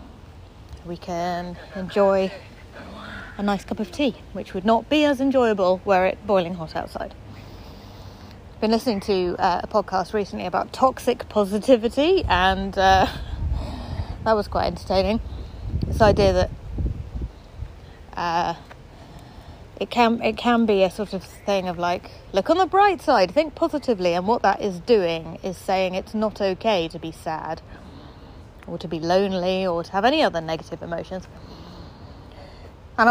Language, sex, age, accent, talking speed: English, female, 30-49, British, 150 wpm